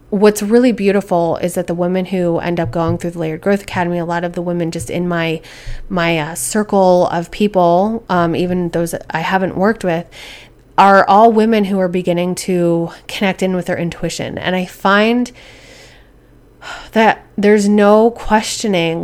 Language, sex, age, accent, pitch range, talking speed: English, female, 20-39, American, 175-205 Hz, 175 wpm